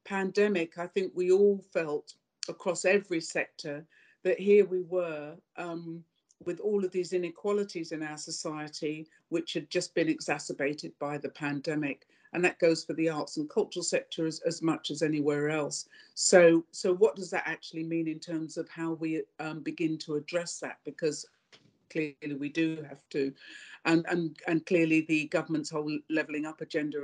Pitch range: 155-175 Hz